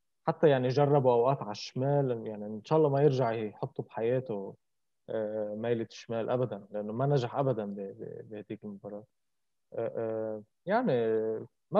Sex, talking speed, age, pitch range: male, 125 wpm, 20-39, 120-155 Hz